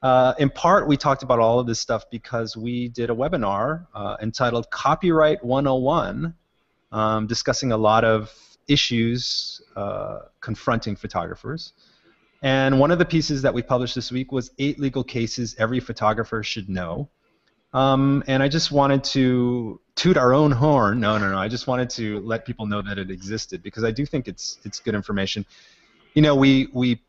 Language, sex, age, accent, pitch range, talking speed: English, male, 30-49, American, 105-135 Hz, 180 wpm